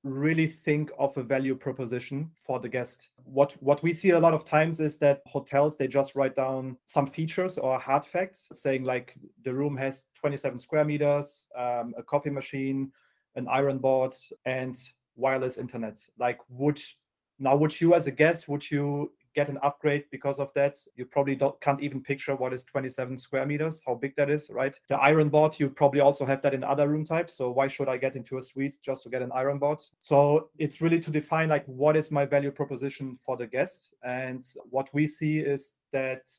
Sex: male